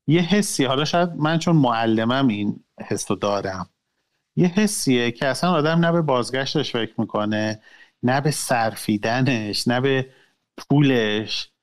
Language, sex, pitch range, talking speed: Persian, male, 110-155 Hz, 135 wpm